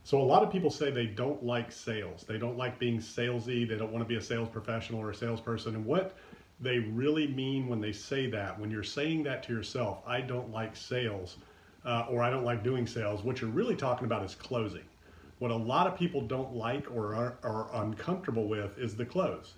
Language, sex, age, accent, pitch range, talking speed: English, male, 40-59, American, 105-130 Hz, 225 wpm